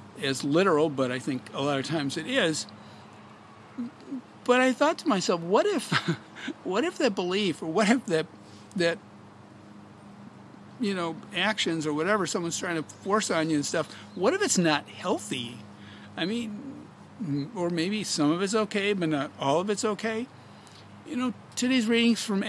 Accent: American